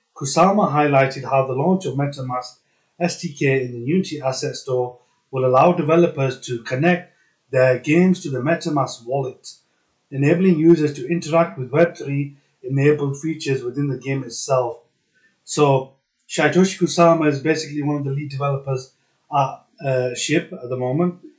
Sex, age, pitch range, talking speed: male, 30-49, 130-165 Hz, 145 wpm